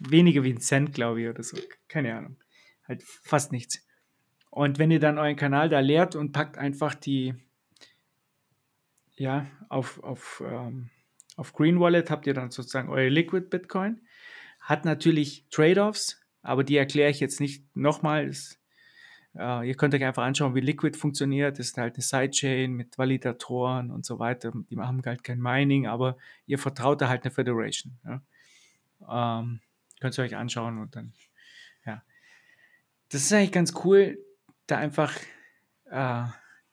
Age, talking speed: 30-49, 160 wpm